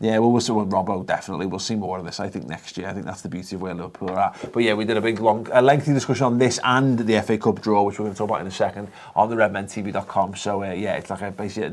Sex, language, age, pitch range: male, English, 30-49, 95-115 Hz